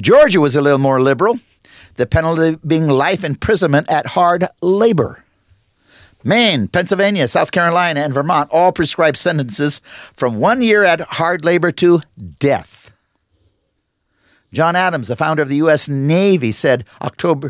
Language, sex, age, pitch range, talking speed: English, male, 50-69, 140-170 Hz, 140 wpm